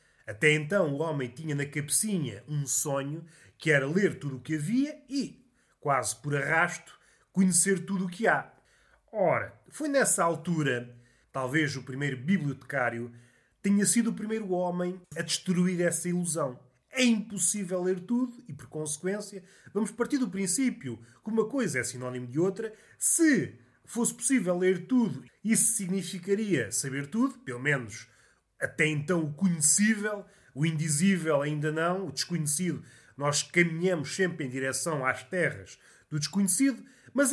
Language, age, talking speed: Portuguese, 30-49, 145 wpm